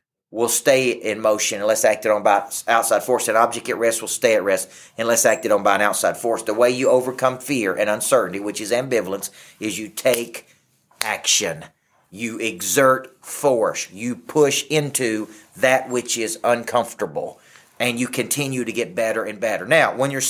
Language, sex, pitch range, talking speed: English, male, 115-150 Hz, 175 wpm